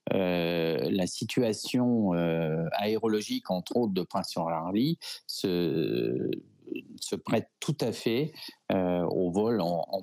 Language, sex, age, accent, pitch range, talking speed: French, male, 50-69, French, 85-105 Hz, 125 wpm